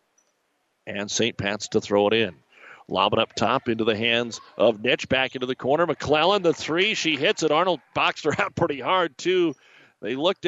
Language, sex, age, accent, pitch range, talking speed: English, male, 50-69, American, 115-145 Hz, 195 wpm